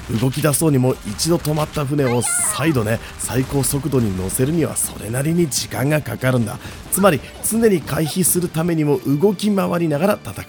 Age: 30-49